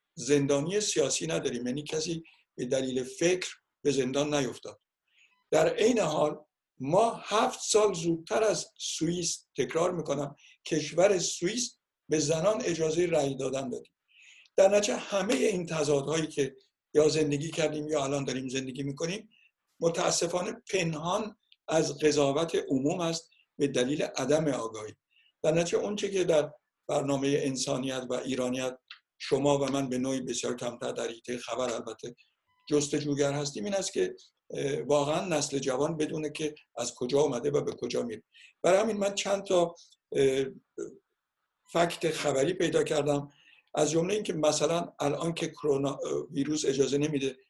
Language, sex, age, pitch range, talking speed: Persian, male, 60-79, 140-175 Hz, 140 wpm